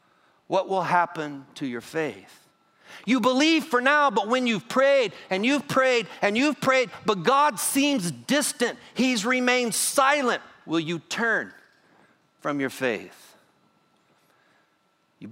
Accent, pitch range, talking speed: American, 180-255 Hz, 135 wpm